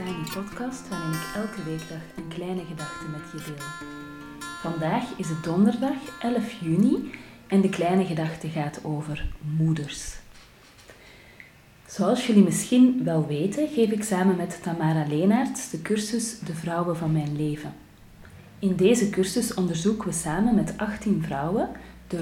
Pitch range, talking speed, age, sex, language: 160-205 Hz, 145 wpm, 30-49, female, Dutch